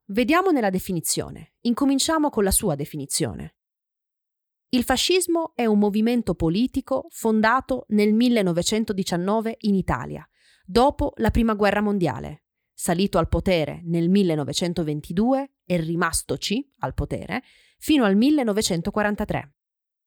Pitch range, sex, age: 170-235 Hz, female, 30-49